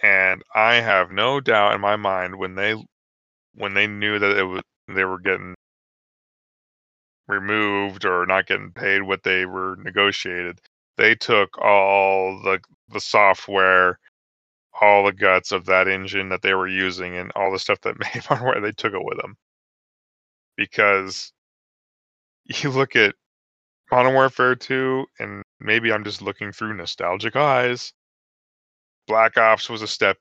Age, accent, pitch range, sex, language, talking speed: 20-39, American, 90-105 Hz, male, English, 155 wpm